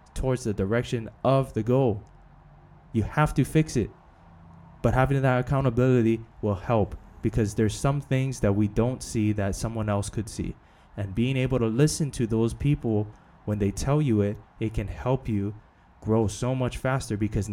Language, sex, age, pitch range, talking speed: English, male, 20-39, 100-120 Hz, 180 wpm